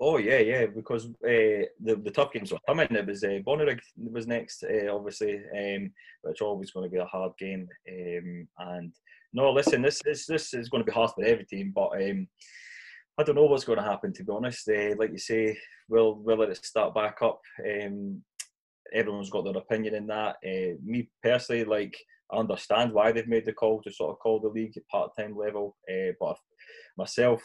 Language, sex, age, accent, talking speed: English, male, 20-39, British, 210 wpm